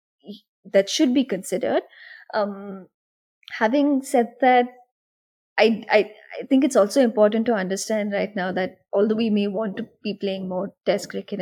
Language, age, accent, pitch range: English, 20-39, Indian, 195-235 Hz